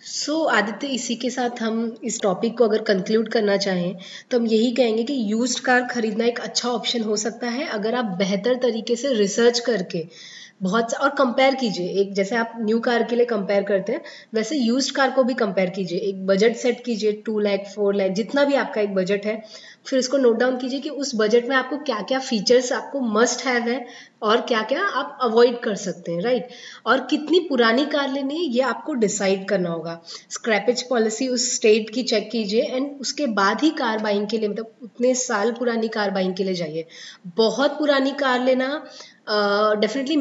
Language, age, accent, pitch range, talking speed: English, 20-39, Indian, 210-255 Hz, 150 wpm